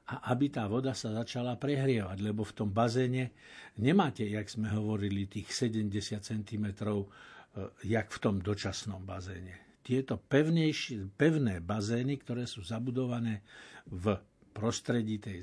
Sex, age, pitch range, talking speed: male, 60-79, 105-130 Hz, 130 wpm